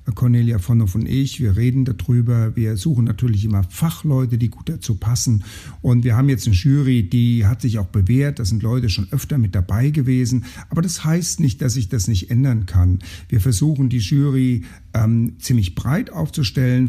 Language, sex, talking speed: German, male, 190 wpm